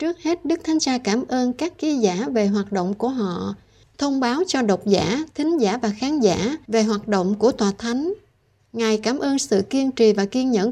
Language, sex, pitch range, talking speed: Vietnamese, female, 200-250 Hz, 225 wpm